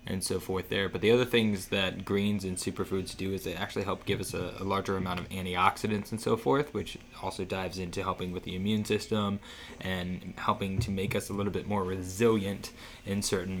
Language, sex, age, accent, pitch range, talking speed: English, male, 20-39, American, 95-115 Hz, 215 wpm